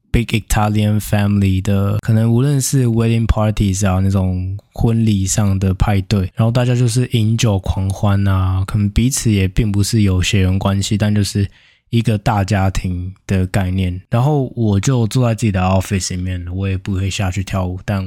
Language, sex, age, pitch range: Chinese, male, 20-39, 95-115 Hz